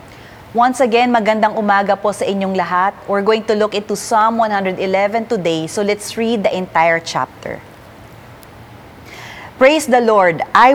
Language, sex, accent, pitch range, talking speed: English, female, Filipino, 170-220 Hz, 145 wpm